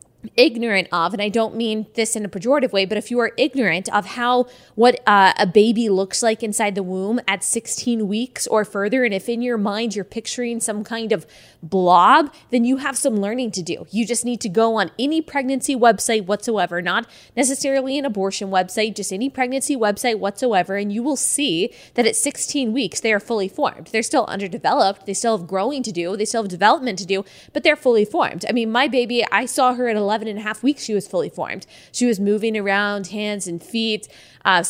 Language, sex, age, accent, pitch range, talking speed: English, female, 20-39, American, 200-245 Hz, 220 wpm